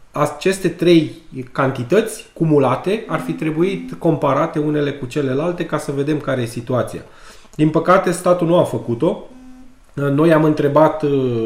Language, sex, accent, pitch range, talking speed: Romanian, male, native, 120-160 Hz, 135 wpm